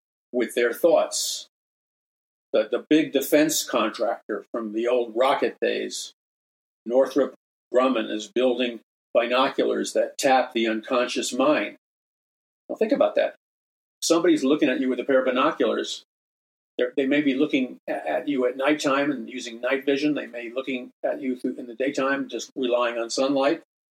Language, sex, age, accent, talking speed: English, male, 50-69, American, 155 wpm